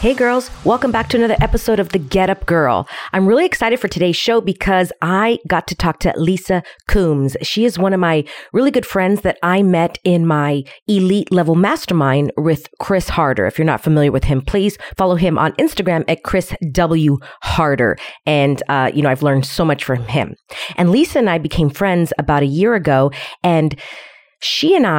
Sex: female